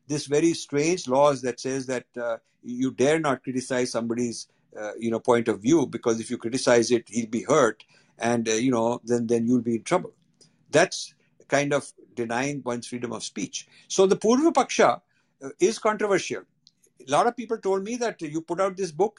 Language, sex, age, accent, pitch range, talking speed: Hindi, male, 60-79, native, 125-190 Hz, 195 wpm